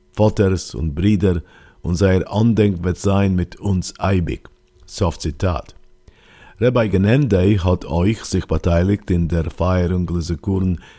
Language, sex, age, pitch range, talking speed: English, male, 50-69, 85-100 Hz, 120 wpm